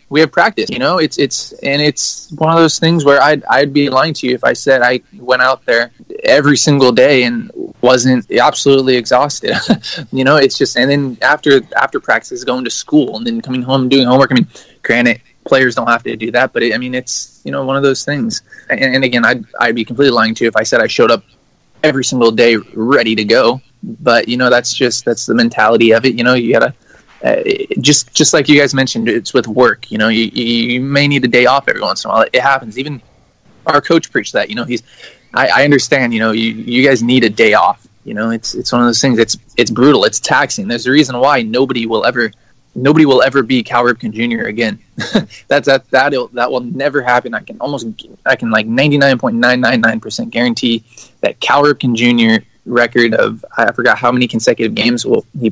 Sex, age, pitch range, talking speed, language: male, 20-39, 120-140 Hz, 235 wpm, English